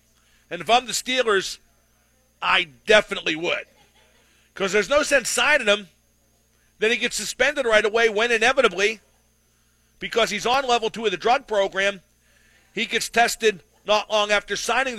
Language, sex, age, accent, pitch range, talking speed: English, male, 50-69, American, 195-240 Hz, 150 wpm